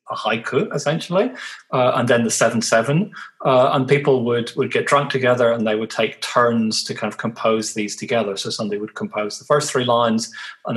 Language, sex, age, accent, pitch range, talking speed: English, male, 30-49, British, 110-130 Hz, 210 wpm